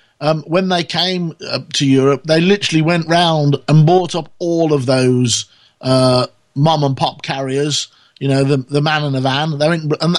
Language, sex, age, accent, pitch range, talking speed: English, male, 50-69, British, 125-165 Hz, 170 wpm